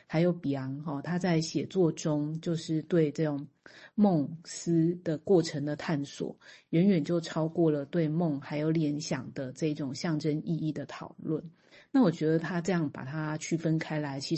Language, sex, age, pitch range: Chinese, female, 30-49, 145-165 Hz